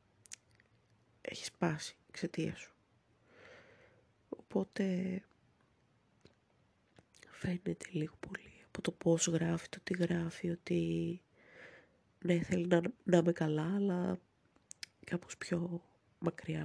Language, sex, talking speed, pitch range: Greek, female, 95 wpm, 170-195 Hz